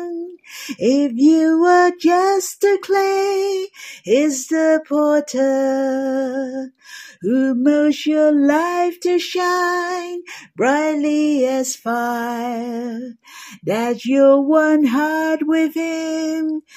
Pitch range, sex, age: 235-305 Hz, female, 40-59